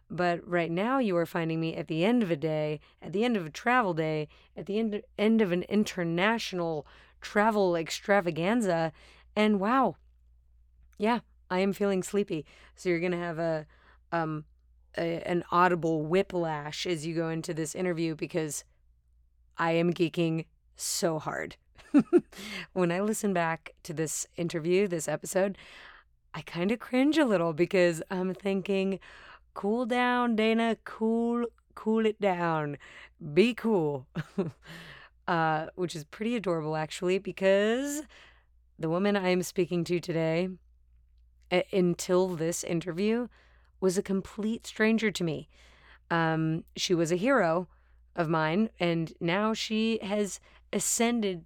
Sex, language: female, English